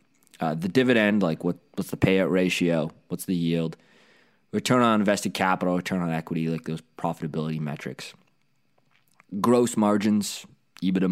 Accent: American